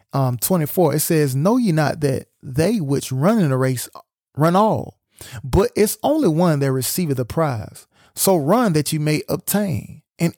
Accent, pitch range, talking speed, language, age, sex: American, 130-180 Hz, 180 wpm, English, 30-49, male